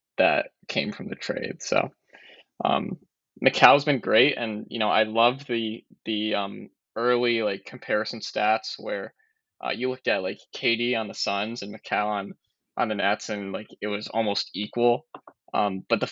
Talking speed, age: 180 wpm, 20-39